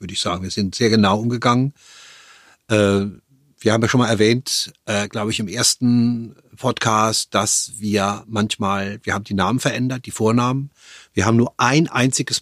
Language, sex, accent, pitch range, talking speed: German, male, German, 105-135 Hz, 175 wpm